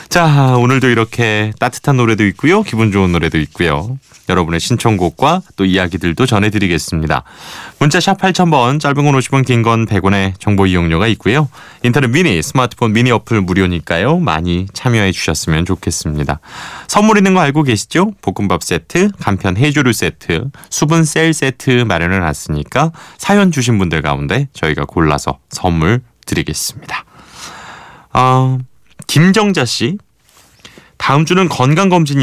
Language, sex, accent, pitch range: Korean, male, native, 95-145 Hz